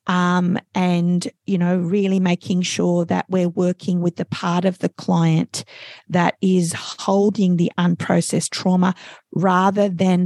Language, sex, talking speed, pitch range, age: English, female, 140 wpm, 175-215 Hz, 40-59